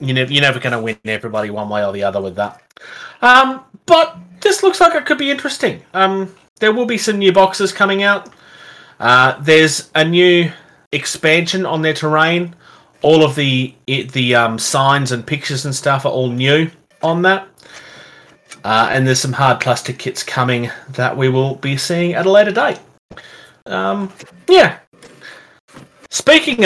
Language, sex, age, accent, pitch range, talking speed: English, male, 30-49, Australian, 130-190 Hz, 165 wpm